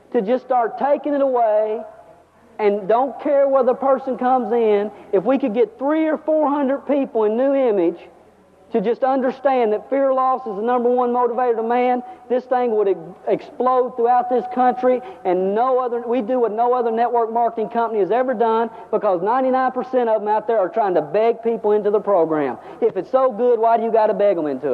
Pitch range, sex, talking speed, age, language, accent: 230-275 Hz, male, 210 wpm, 50-69, English, American